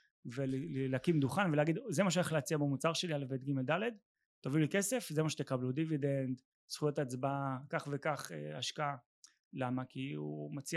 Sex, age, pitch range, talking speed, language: male, 30-49, 130-160 Hz, 160 wpm, Hebrew